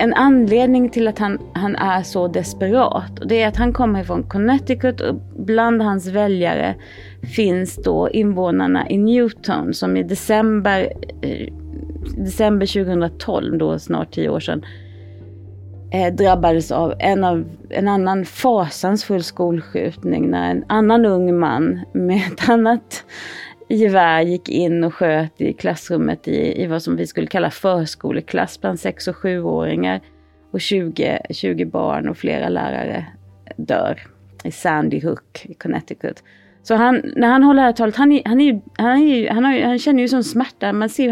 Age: 30-49